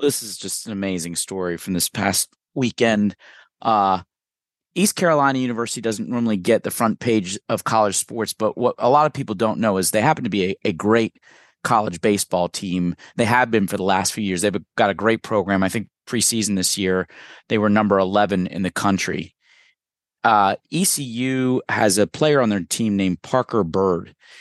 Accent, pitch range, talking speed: American, 95-115 Hz, 190 wpm